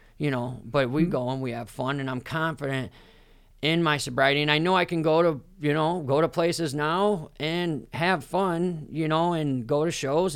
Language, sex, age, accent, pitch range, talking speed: English, male, 40-59, American, 115-155 Hz, 215 wpm